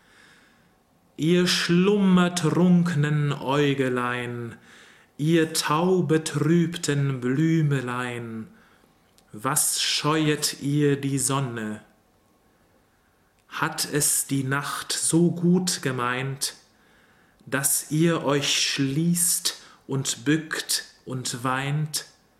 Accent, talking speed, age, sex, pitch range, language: German, 70 wpm, 40-59, male, 130-160 Hz, English